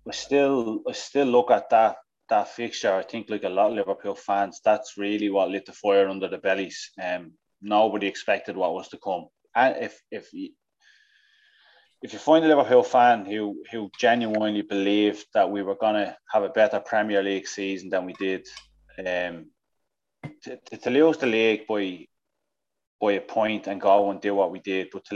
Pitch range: 100-120 Hz